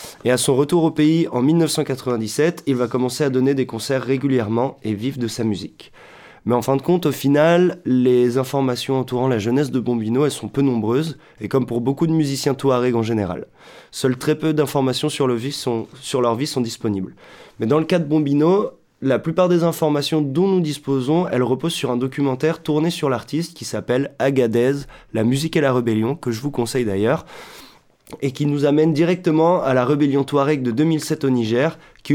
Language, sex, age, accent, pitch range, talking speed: French, male, 20-39, French, 120-145 Hz, 205 wpm